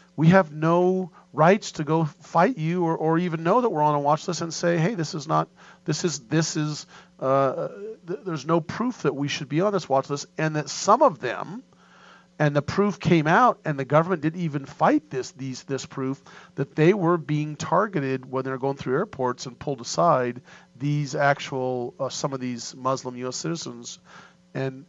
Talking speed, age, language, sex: 205 wpm, 40-59, English, male